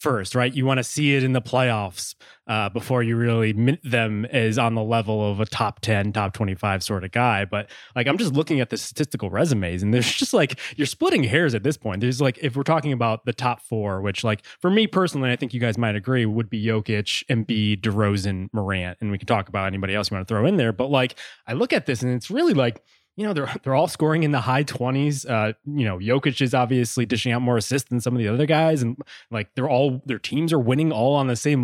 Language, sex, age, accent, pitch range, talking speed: English, male, 20-39, American, 110-150 Hz, 260 wpm